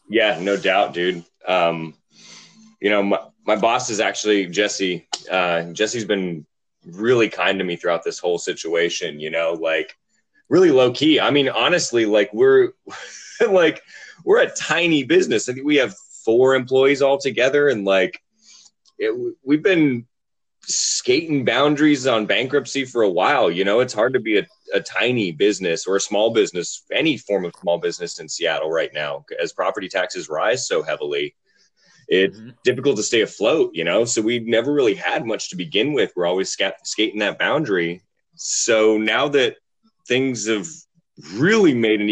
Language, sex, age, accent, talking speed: English, male, 20-39, American, 170 wpm